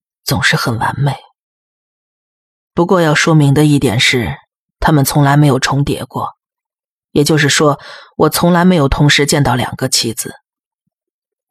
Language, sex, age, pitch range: Chinese, female, 20-39, 130-155 Hz